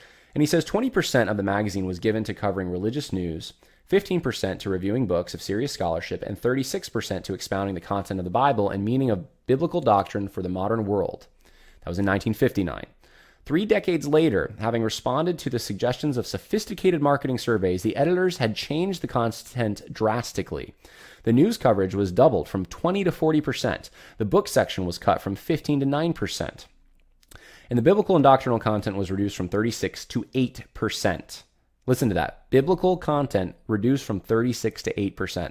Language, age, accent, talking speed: English, 20-39, American, 165 wpm